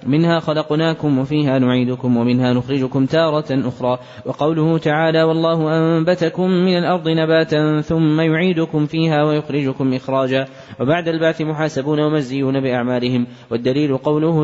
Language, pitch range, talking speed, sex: Arabic, 135-165 Hz, 110 wpm, male